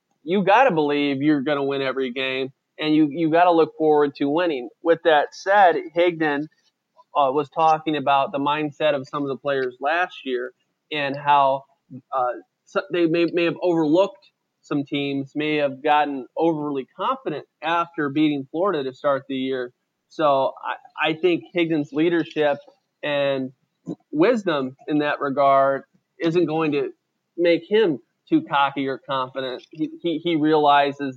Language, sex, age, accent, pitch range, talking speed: English, male, 20-39, American, 140-165 Hz, 155 wpm